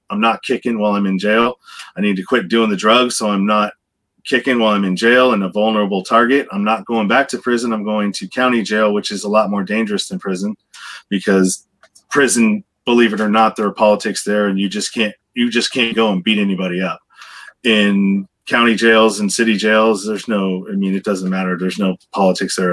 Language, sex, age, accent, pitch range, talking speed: English, male, 30-49, American, 100-125 Hz, 220 wpm